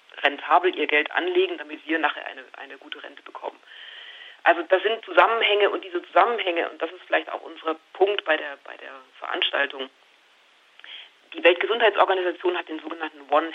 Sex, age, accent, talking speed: female, 40-59, German, 160 wpm